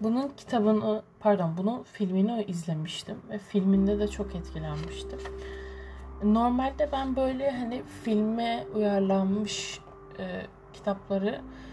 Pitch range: 165-215 Hz